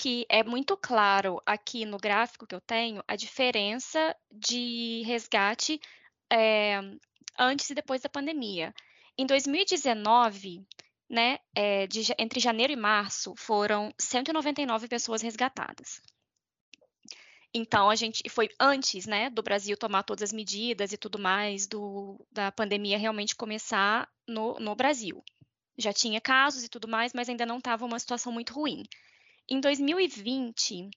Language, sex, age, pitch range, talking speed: Portuguese, female, 10-29, 215-255 Hz, 130 wpm